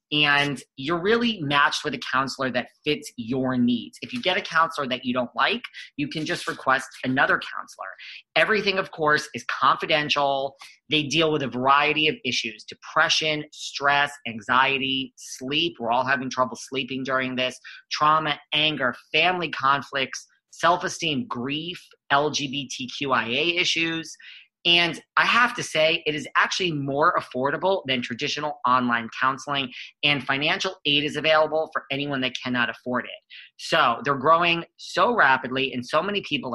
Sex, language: male, English